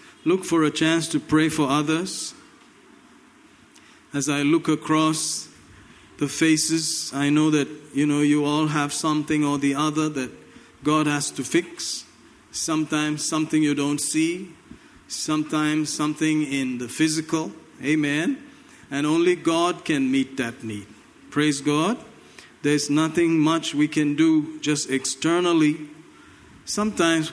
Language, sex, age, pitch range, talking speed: English, male, 50-69, 140-160 Hz, 130 wpm